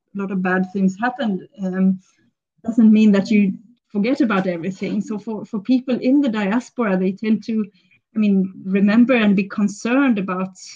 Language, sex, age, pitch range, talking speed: Amharic, female, 30-49, 190-225 Hz, 180 wpm